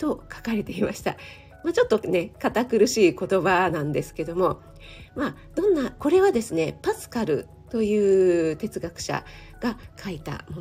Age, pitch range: 40-59, 170-275 Hz